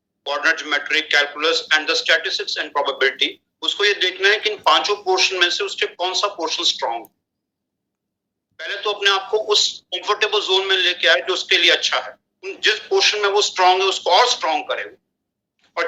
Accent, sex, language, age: native, male, Hindi, 40-59